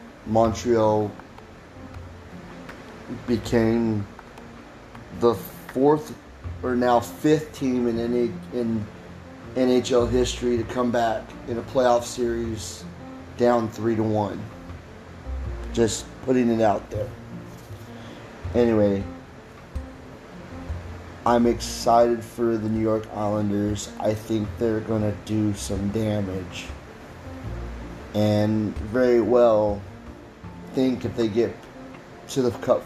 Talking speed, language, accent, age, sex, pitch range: 95 wpm, English, American, 30-49, male, 95-115 Hz